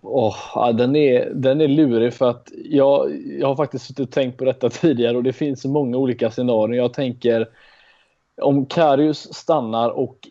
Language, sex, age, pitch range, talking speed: Swedish, male, 20-39, 110-130 Hz, 180 wpm